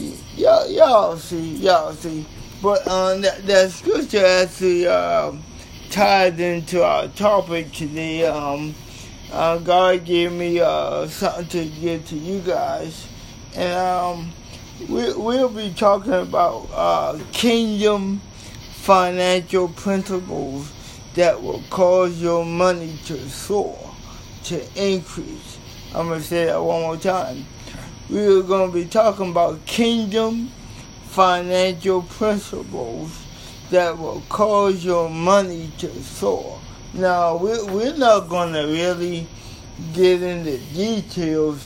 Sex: male